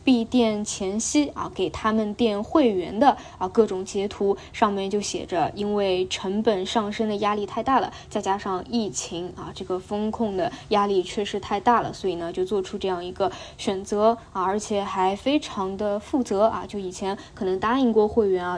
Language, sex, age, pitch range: Chinese, female, 20-39, 195-245 Hz